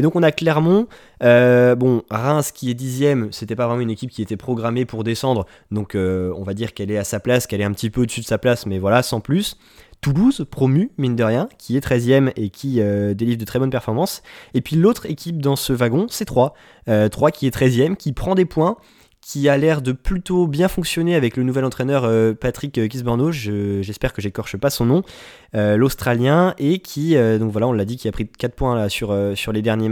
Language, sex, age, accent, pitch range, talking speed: French, male, 20-39, French, 110-145 Hz, 240 wpm